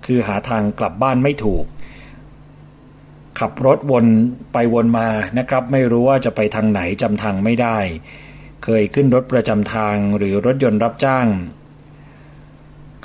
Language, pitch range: Thai, 105-140 Hz